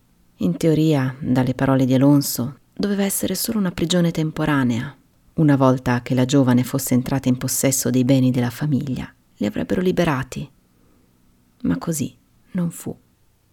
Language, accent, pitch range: Italian, native, 130-160 Hz